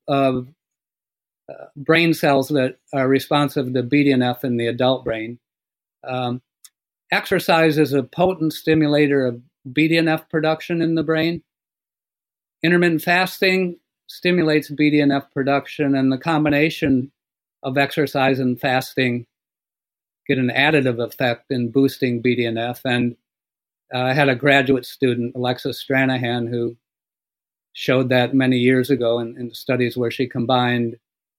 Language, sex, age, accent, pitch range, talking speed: English, male, 50-69, American, 120-140 Hz, 120 wpm